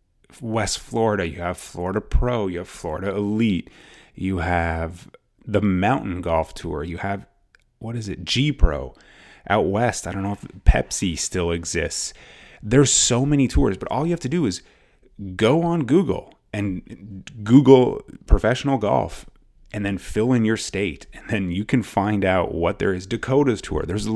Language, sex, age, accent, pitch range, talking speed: English, male, 30-49, American, 90-130 Hz, 170 wpm